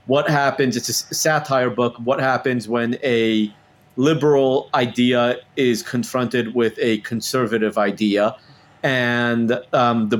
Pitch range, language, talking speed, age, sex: 120-140 Hz, English, 125 wpm, 30-49, male